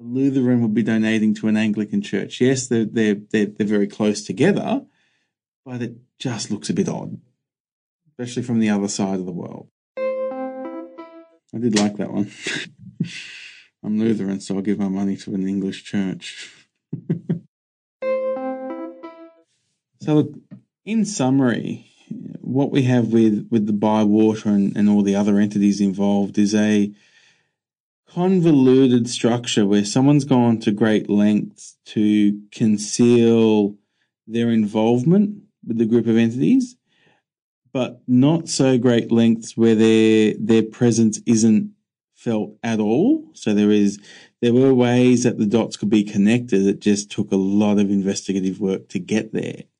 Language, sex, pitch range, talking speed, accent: English, male, 105-135 Hz, 145 wpm, Australian